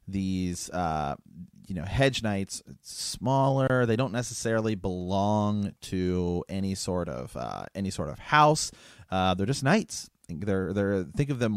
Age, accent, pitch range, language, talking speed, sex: 30-49, American, 90-110 Hz, English, 155 wpm, male